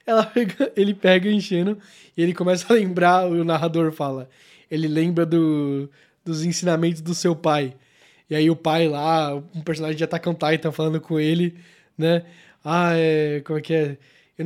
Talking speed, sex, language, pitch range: 175 wpm, male, Portuguese, 165-225 Hz